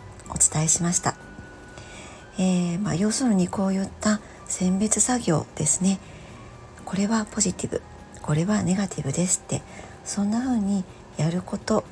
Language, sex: Japanese, male